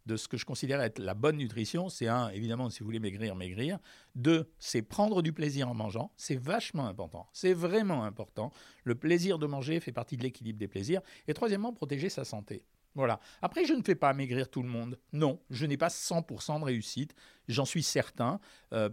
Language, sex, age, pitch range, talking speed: French, male, 50-69, 115-160 Hz, 210 wpm